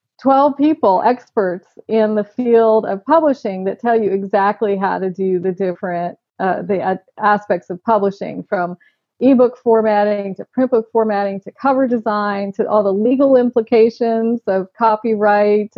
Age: 40-59